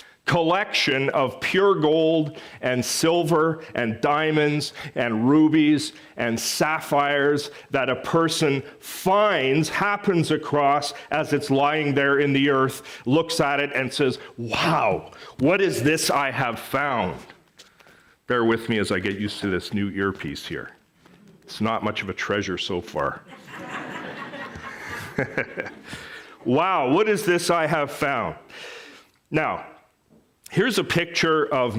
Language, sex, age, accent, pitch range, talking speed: English, male, 40-59, American, 115-155 Hz, 130 wpm